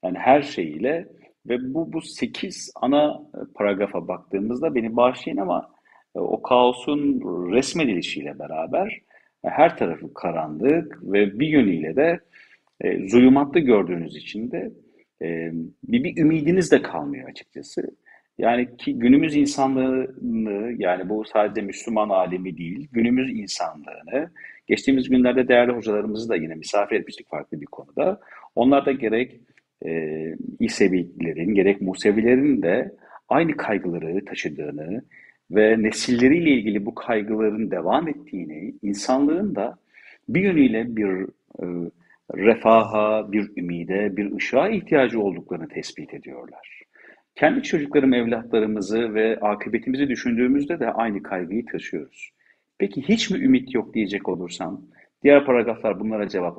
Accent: native